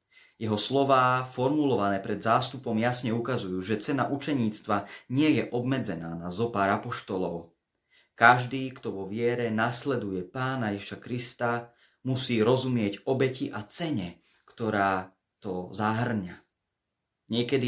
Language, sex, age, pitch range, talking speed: Slovak, male, 30-49, 100-130 Hz, 110 wpm